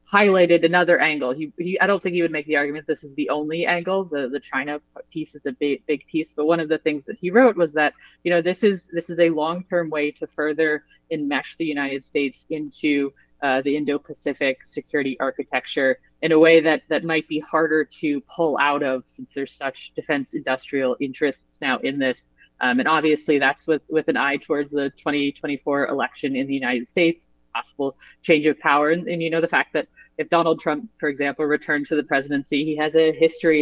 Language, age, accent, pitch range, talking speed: English, 20-39, American, 140-165 Hz, 210 wpm